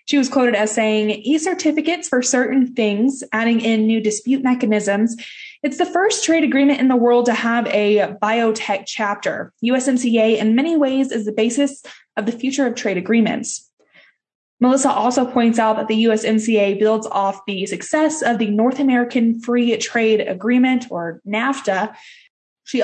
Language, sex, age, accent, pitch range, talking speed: English, female, 20-39, American, 210-255 Hz, 160 wpm